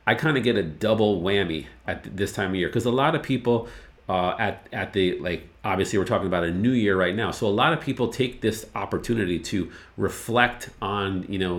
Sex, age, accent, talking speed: male, 40-59, American, 230 wpm